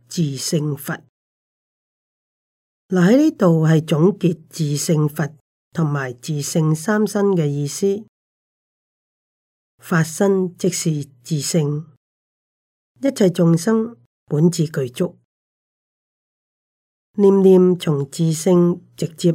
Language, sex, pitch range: Chinese, female, 145-180 Hz